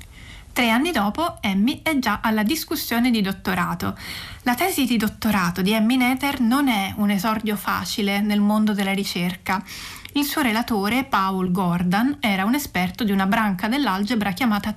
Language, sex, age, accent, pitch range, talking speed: Italian, female, 30-49, native, 200-255 Hz, 160 wpm